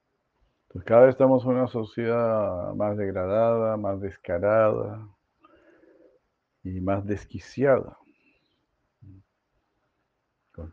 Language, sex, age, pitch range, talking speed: Spanish, male, 50-69, 100-120 Hz, 80 wpm